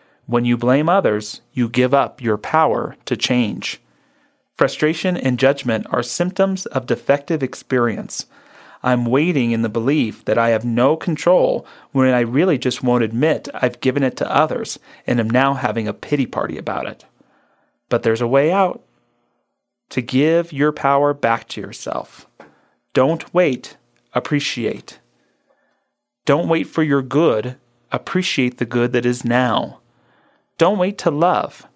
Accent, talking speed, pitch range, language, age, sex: American, 150 wpm, 120-140 Hz, English, 30-49, male